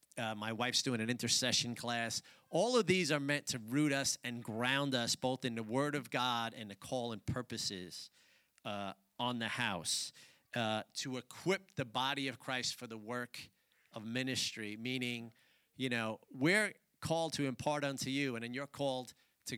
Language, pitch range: English, 125-165 Hz